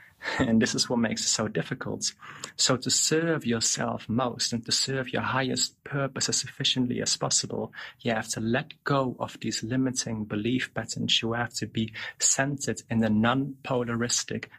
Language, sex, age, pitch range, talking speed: English, male, 30-49, 110-130 Hz, 170 wpm